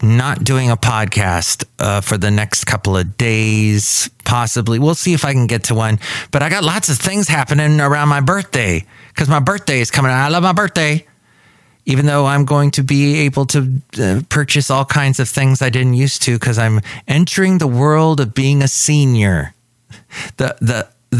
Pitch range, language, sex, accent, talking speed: 110-140 Hz, English, male, American, 195 wpm